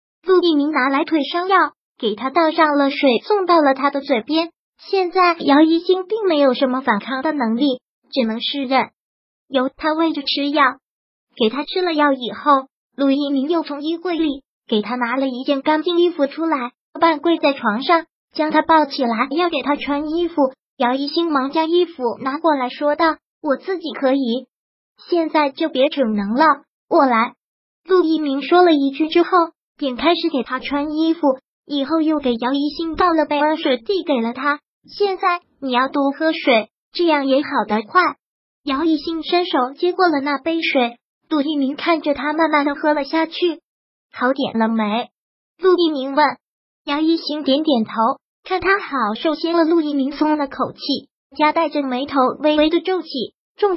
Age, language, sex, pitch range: 20-39, Chinese, male, 265-330 Hz